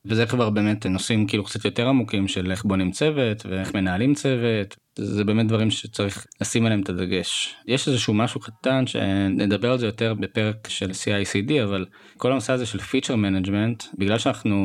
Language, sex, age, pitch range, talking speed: English, male, 20-39, 100-115 Hz, 145 wpm